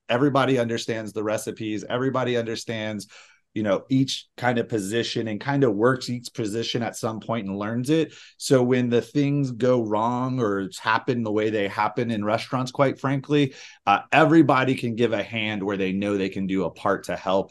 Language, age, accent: English, 30-49, American